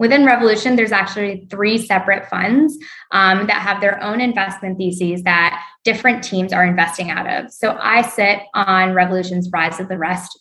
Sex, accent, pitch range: female, American, 180-225 Hz